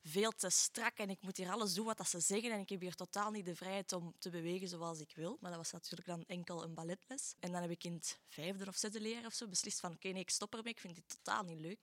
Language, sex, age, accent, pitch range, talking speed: Dutch, female, 20-39, Belgian, 170-195 Hz, 300 wpm